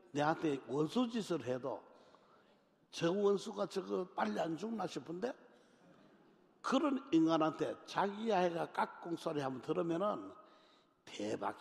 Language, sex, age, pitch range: Korean, male, 60-79, 140-195 Hz